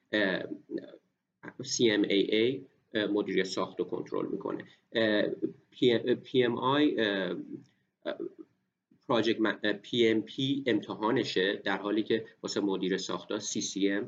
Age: 40-59